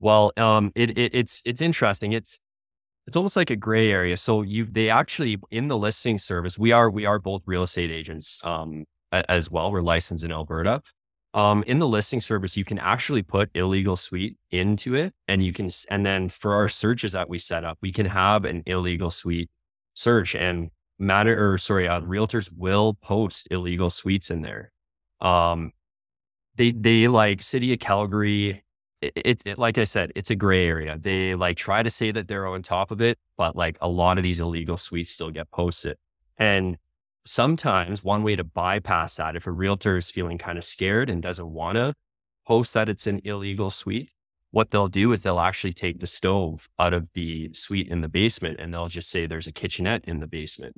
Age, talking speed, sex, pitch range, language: 20-39, 200 wpm, male, 85-110 Hz, English